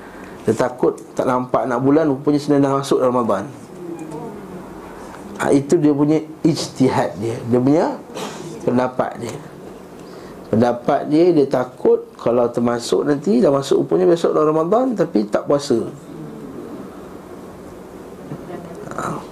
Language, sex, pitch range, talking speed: Malay, male, 120-150 Hz, 120 wpm